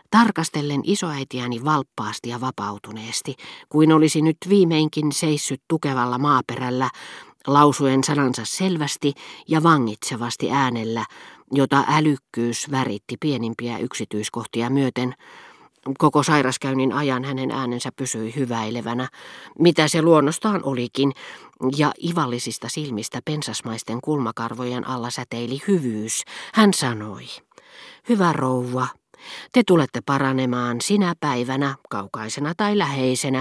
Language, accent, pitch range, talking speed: Finnish, native, 125-170 Hz, 100 wpm